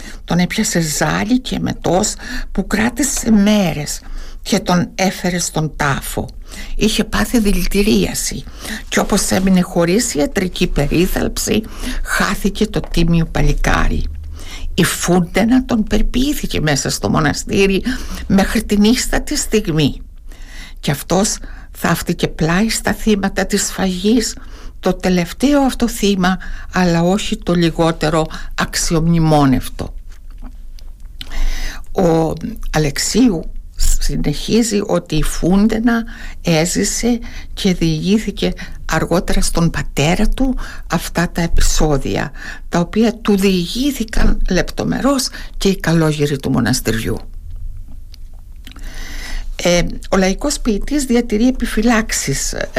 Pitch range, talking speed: 145-210 Hz, 95 wpm